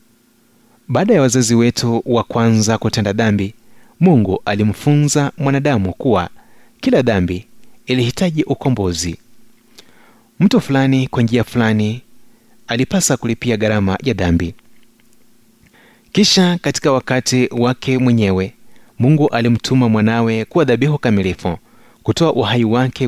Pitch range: 110-145 Hz